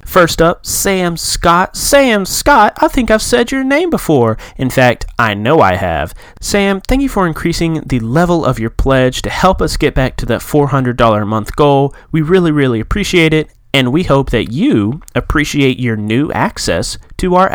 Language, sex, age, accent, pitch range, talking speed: English, male, 30-49, American, 110-170 Hz, 200 wpm